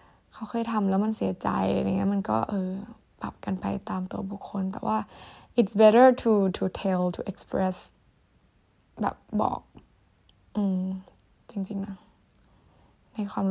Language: Thai